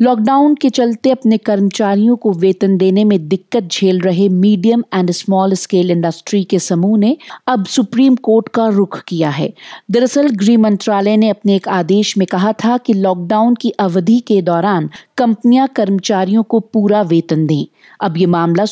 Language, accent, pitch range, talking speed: Hindi, native, 185-235 Hz, 165 wpm